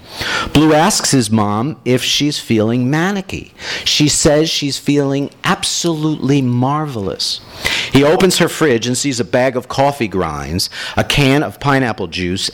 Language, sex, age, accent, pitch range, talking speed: English, male, 50-69, American, 115-155 Hz, 145 wpm